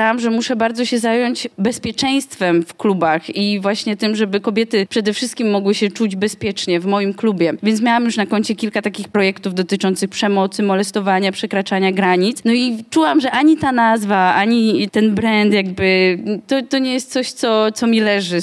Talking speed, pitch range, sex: 180 wpm, 200-235 Hz, female